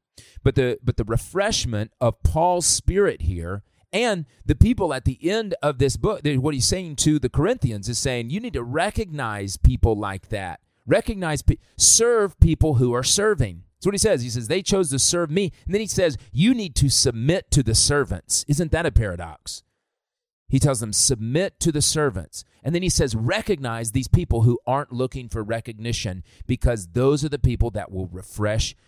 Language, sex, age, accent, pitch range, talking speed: English, male, 30-49, American, 100-140 Hz, 195 wpm